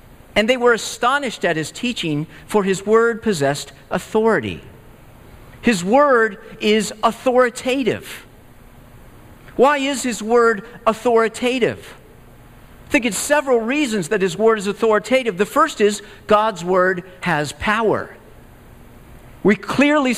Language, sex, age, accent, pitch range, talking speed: English, male, 50-69, American, 180-235 Hz, 120 wpm